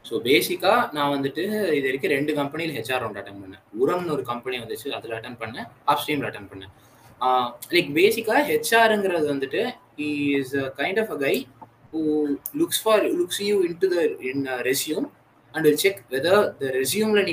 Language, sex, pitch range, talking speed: Tamil, male, 135-215 Hz, 75 wpm